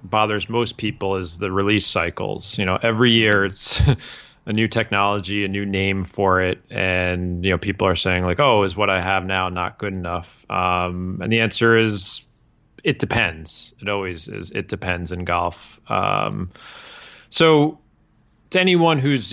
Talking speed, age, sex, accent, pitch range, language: 170 wpm, 30-49, male, American, 90-115 Hz, English